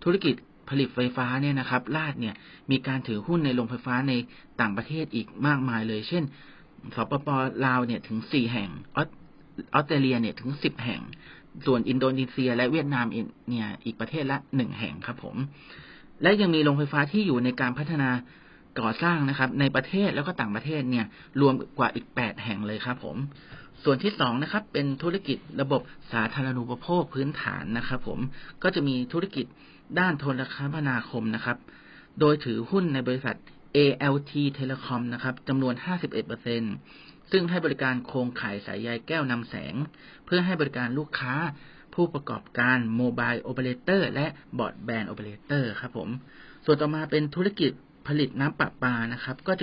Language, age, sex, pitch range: Thai, 30-49, male, 125-150 Hz